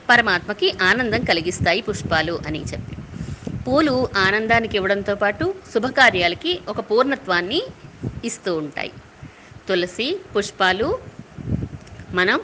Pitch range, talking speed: 180-240 Hz, 85 wpm